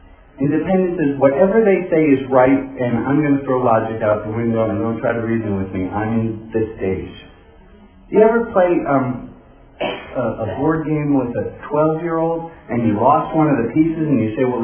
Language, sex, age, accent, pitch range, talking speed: English, male, 40-59, American, 115-170 Hz, 205 wpm